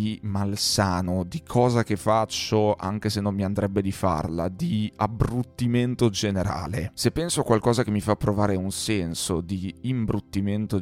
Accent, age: native, 30-49